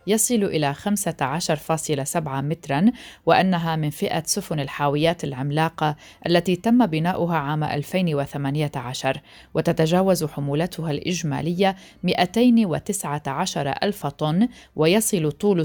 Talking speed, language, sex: 90 wpm, Arabic, female